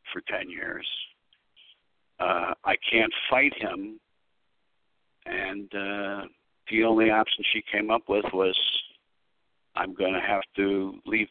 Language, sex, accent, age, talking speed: English, male, American, 60-79, 125 wpm